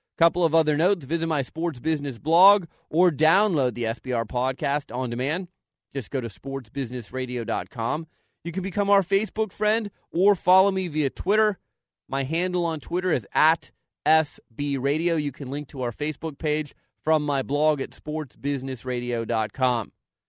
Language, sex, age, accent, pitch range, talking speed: English, male, 30-49, American, 140-185 Hz, 150 wpm